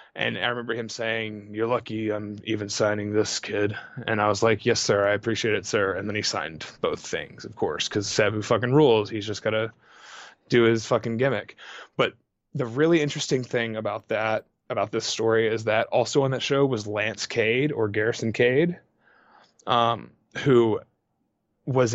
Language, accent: English, American